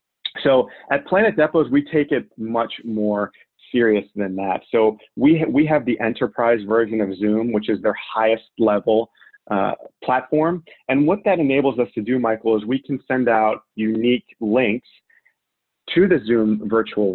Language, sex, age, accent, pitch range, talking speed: English, male, 30-49, American, 105-130 Hz, 170 wpm